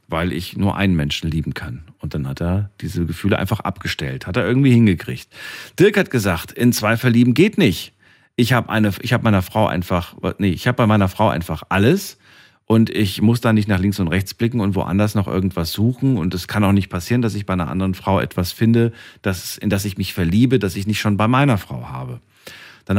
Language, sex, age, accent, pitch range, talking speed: German, male, 40-59, German, 90-120 Hz, 220 wpm